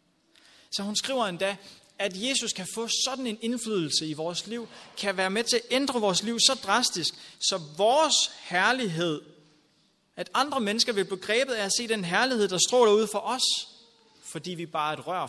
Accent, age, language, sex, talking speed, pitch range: native, 30-49, Danish, male, 185 wpm, 150-235 Hz